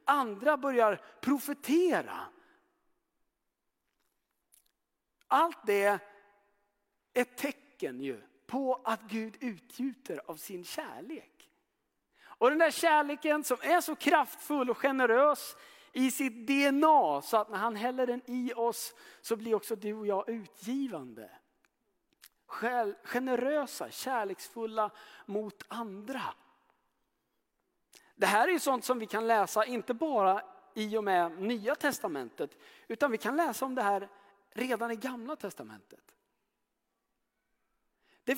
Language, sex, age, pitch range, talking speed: Swedish, male, 50-69, 215-290 Hz, 115 wpm